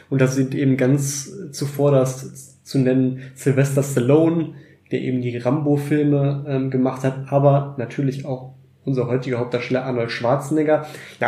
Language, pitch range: German, 135-150 Hz